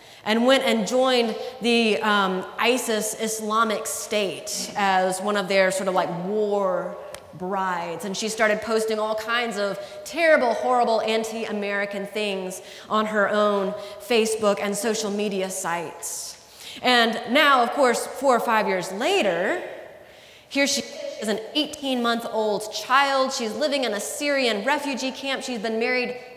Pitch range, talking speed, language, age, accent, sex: 210-265 Hz, 140 wpm, English, 20-39, American, female